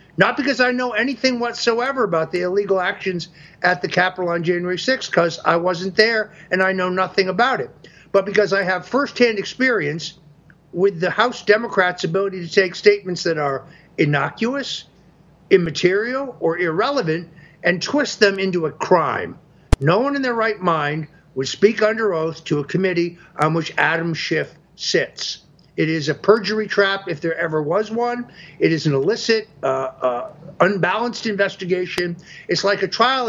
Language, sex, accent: English, male, American